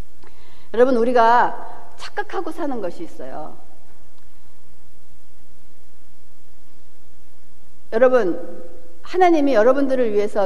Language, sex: Korean, female